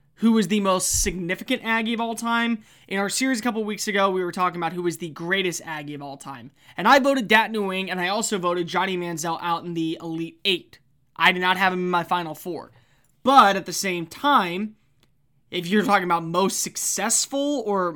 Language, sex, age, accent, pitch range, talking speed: English, male, 20-39, American, 175-225 Hz, 215 wpm